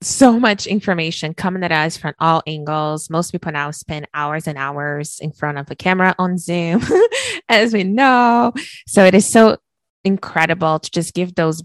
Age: 20-39